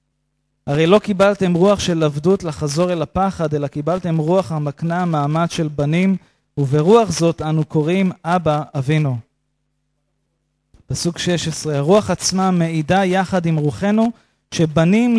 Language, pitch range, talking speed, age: English, 150-195 Hz, 125 wpm, 30-49